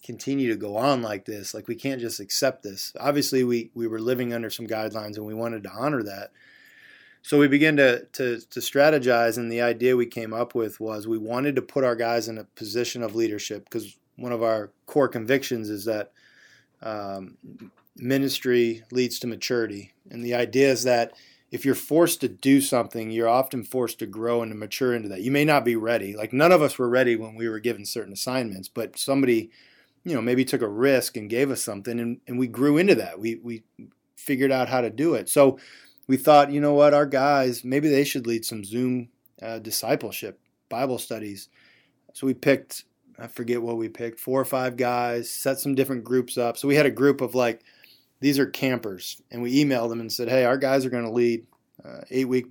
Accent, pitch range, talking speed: American, 115-135 Hz, 215 wpm